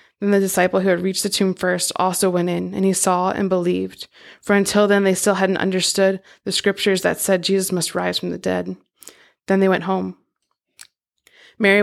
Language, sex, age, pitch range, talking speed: English, female, 20-39, 180-200 Hz, 200 wpm